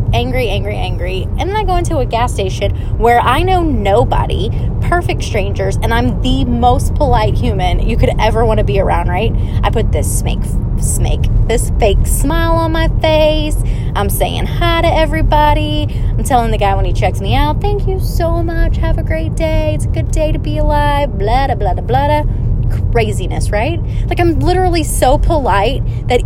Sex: female